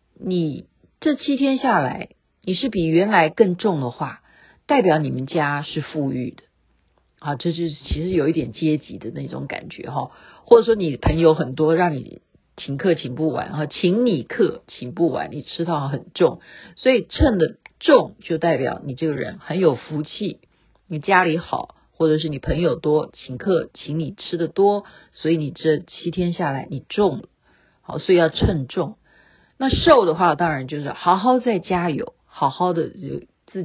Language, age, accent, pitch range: Chinese, 50-69, native, 150-200 Hz